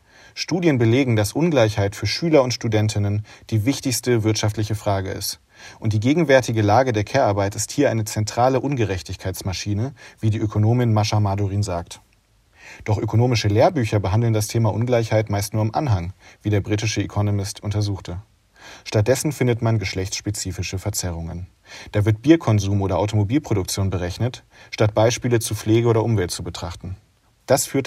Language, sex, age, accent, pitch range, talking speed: German, male, 40-59, German, 100-120 Hz, 145 wpm